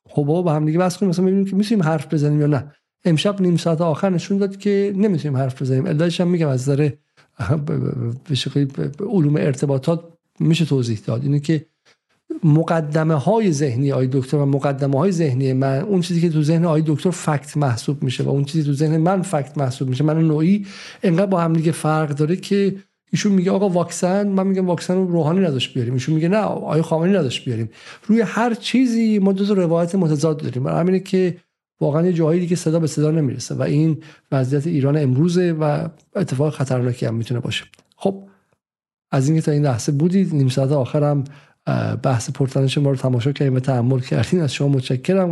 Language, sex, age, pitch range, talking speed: Persian, male, 50-69, 140-180 Hz, 190 wpm